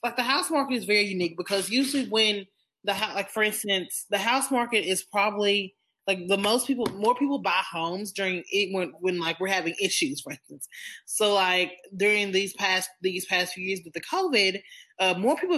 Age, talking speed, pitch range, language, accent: 20-39, 200 wpm, 180-220 Hz, English, American